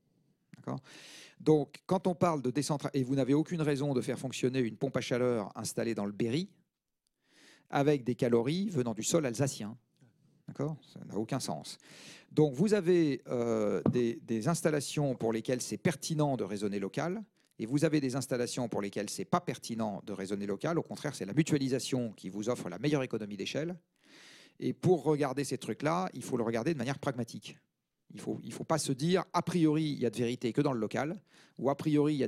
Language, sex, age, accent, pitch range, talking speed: French, male, 40-59, French, 120-160 Hz, 205 wpm